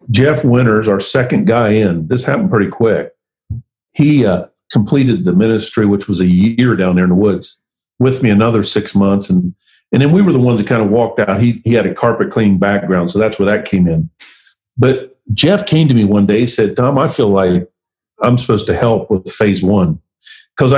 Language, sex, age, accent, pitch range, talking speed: English, male, 50-69, American, 100-125 Hz, 215 wpm